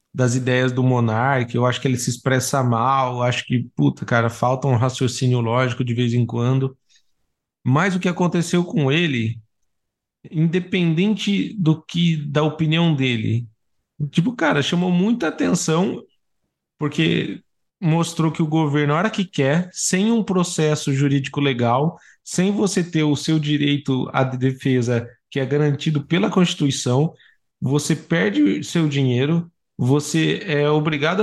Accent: Brazilian